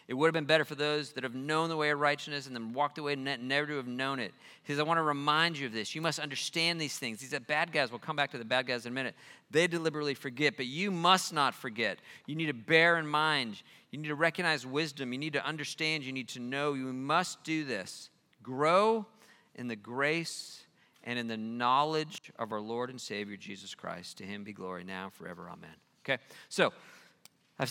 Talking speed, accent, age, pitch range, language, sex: 235 wpm, American, 40-59, 120-155 Hz, English, male